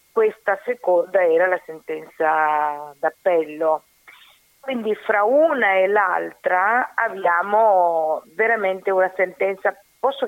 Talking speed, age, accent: 95 wpm, 40-59, native